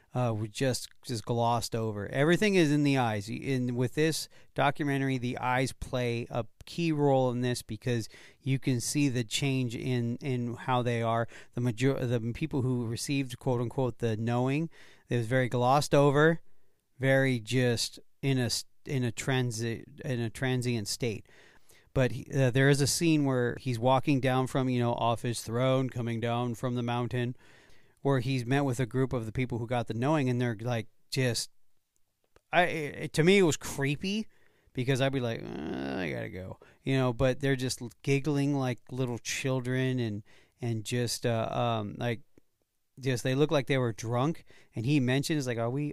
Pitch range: 120-140 Hz